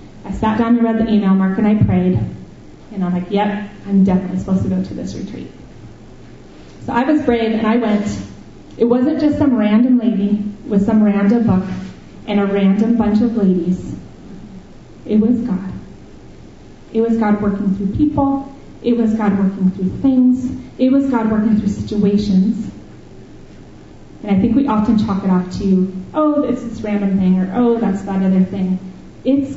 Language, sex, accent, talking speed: English, female, American, 180 wpm